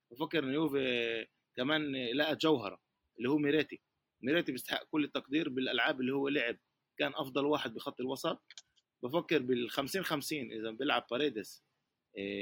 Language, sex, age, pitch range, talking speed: Arabic, male, 30-49, 115-145 Hz, 130 wpm